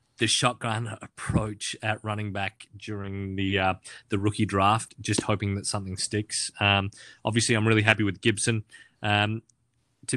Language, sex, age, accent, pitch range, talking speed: English, male, 30-49, Australian, 100-115 Hz, 155 wpm